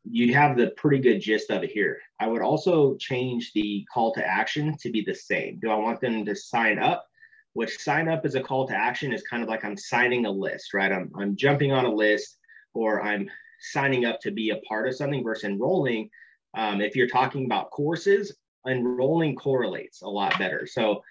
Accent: American